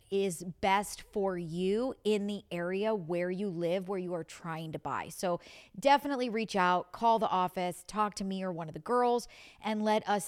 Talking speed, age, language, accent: 200 wpm, 40-59, English, American